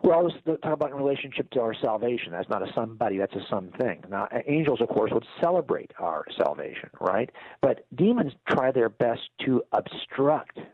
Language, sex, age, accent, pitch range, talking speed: English, male, 50-69, American, 115-155 Hz, 180 wpm